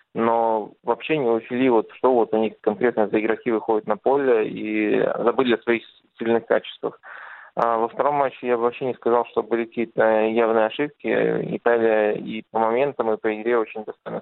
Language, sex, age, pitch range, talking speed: Russian, male, 20-39, 110-115 Hz, 175 wpm